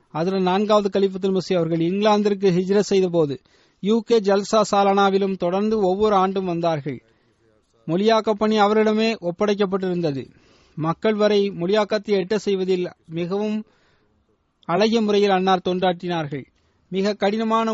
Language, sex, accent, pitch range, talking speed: Tamil, male, native, 190-220 Hz, 85 wpm